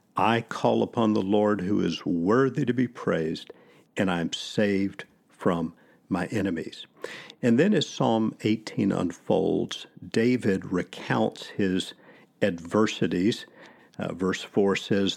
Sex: male